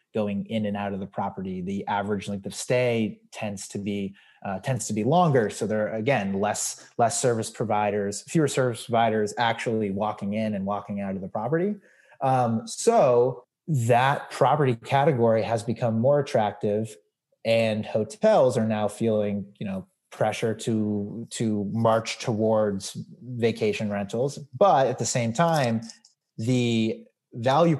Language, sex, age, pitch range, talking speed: English, male, 30-49, 105-125 Hz, 150 wpm